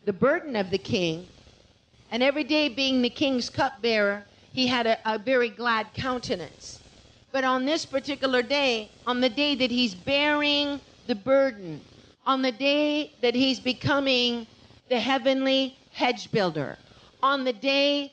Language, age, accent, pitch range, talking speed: English, 50-69, American, 250-290 Hz, 150 wpm